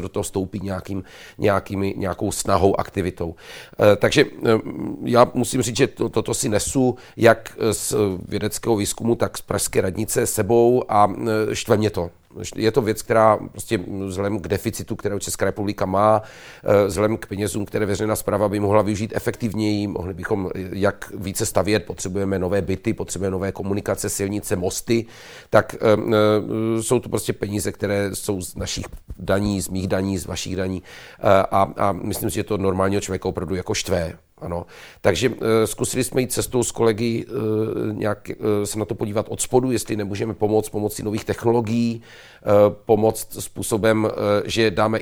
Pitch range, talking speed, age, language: 100-115 Hz, 155 wpm, 40-59, Czech